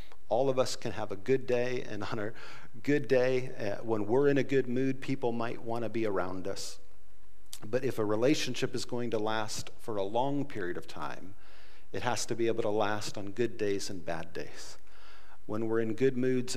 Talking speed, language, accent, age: 215 wpm, English, American, 50-69